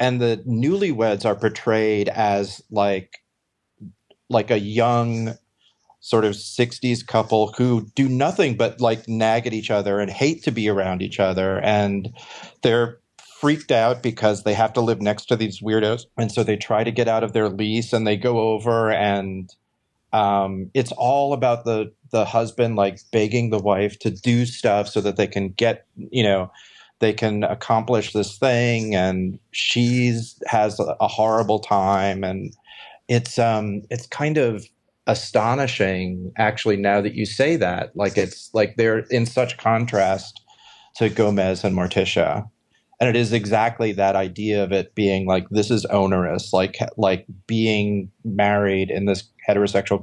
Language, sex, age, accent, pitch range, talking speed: English, male, 40-59, American, 100-115 Hz, 160 wpm